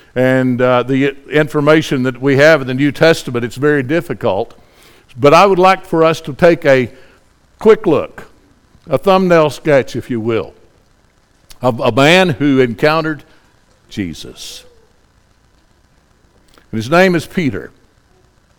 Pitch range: 125-170 Hz